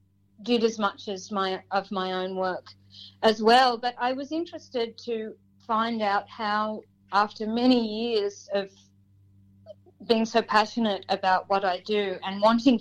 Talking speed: 150 wpm